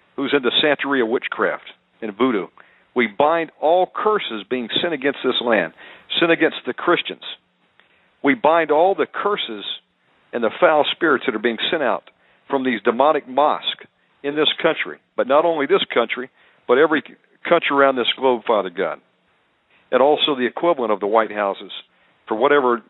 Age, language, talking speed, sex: 50-69, English, 170 wpm, male